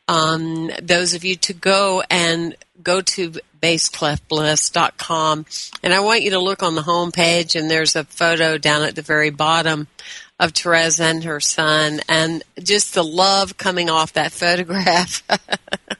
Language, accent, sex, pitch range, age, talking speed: English, American, female, 155-180 Hz, 50-69, 160 wpm